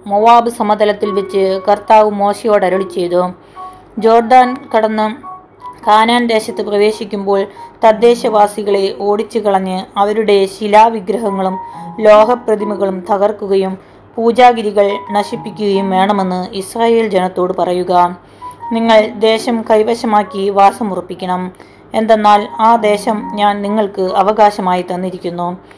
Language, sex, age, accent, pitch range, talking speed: Malayalam, female, 20-39, native, 195-225 Hz, 80 wpm